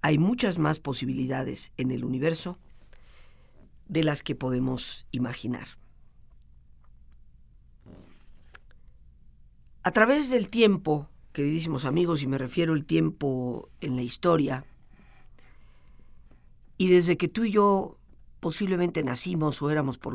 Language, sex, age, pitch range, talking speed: Spanish, female, 50-69, 115-165 Hz, 110 wpm